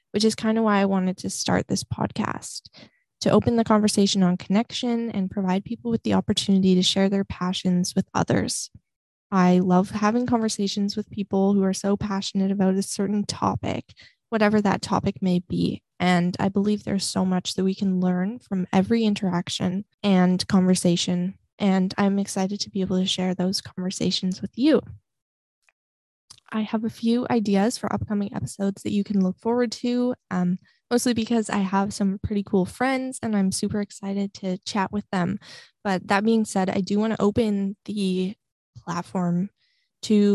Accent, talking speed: American, 175 wpm